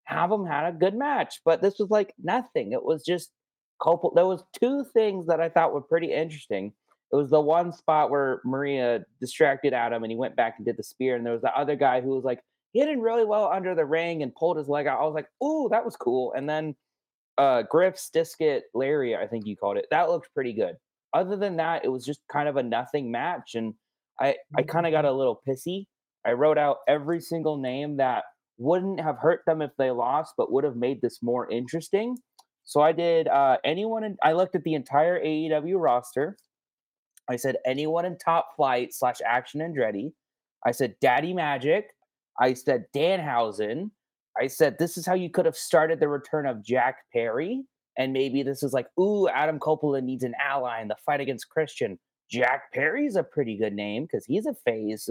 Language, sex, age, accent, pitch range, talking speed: English, male, 20-39, American, 130-180 Hz, 210 wpm